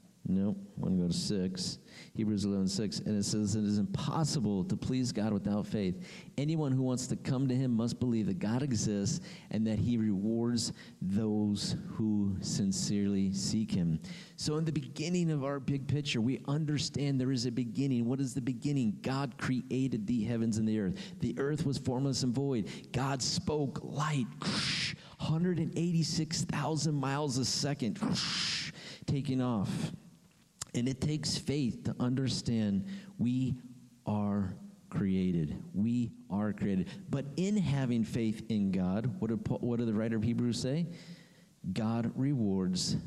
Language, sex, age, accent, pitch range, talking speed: English, male, 50-69, American, 110-165 Hz, 155 wpm